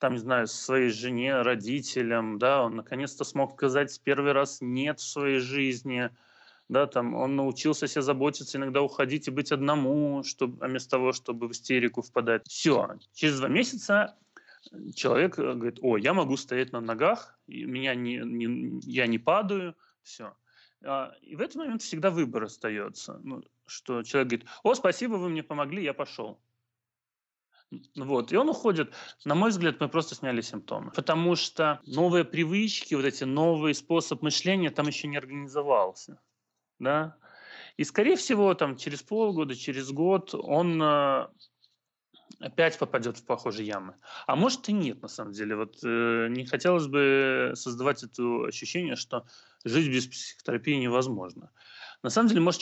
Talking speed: 155 wpm